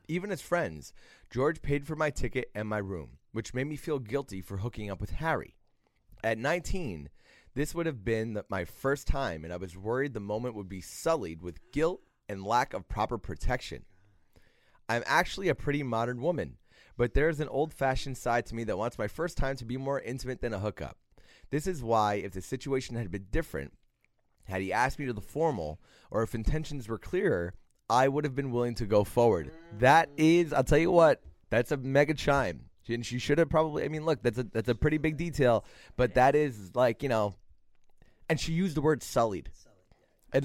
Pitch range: 100-145 Hz